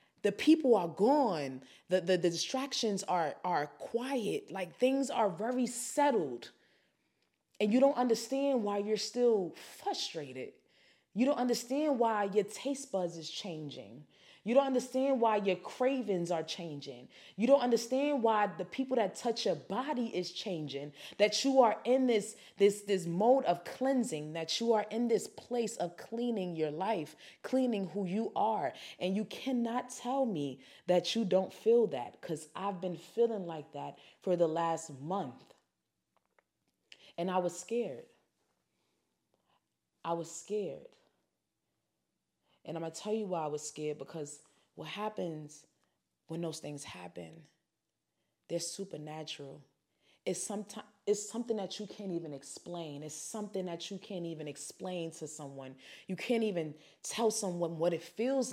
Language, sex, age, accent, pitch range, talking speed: English, female, 20-39, American, 165-235 Hz, 150 wpm